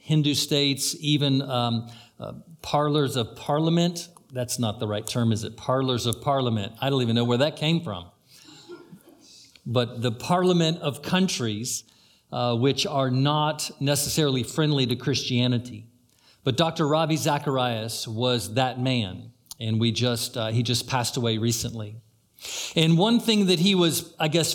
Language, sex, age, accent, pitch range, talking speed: English, male, 50-69, American, 120-160 Hz, 155 wpm